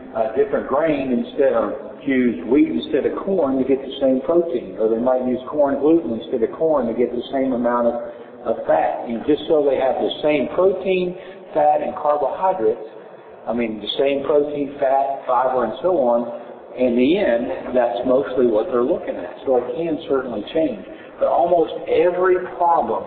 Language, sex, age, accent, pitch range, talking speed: English, male, 60-79, American, 125-170 Hz, 185 wpm